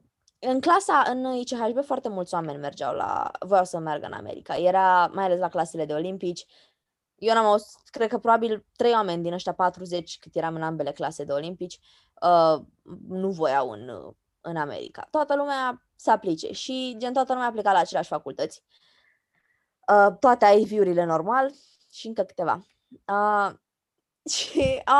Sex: female